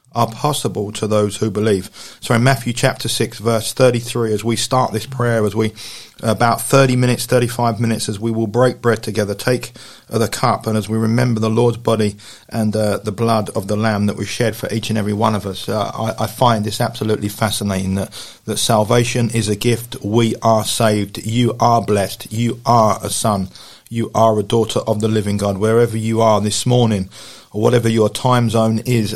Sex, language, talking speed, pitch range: male, English, 205 wpm, 105-120 Hz